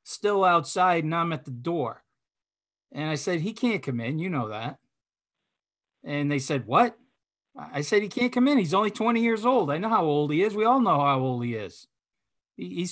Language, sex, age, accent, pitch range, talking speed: English, male, 50-69, American, 145-200 Hz, 215 wpm